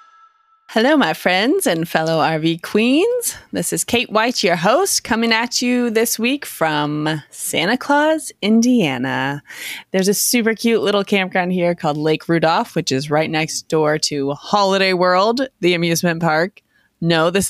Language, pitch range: English, 160-225 Hz